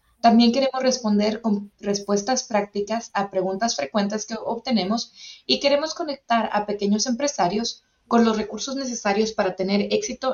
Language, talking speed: English, 140 wpm